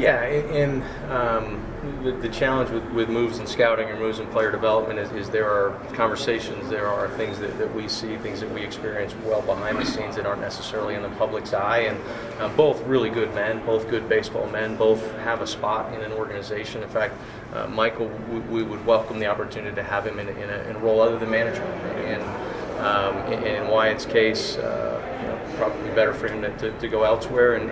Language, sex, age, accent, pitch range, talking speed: English, male, 30-49, American, 110-120 Hz, 220 wpm